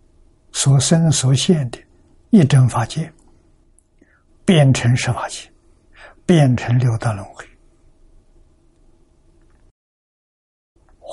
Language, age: Chinese, 60-79